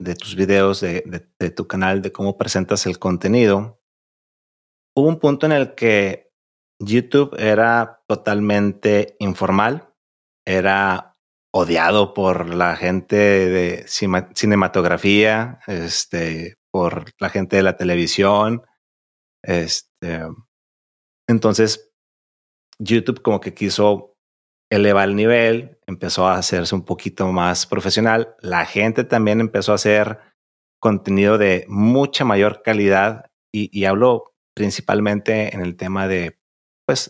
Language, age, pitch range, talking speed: Spanish, 30-49, 90-110 Hz, 120 wpm